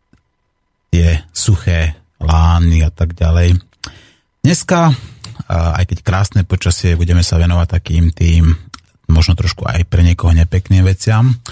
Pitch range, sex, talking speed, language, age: 85-100 Hz, male, 120 wpm, Slovak, 30-49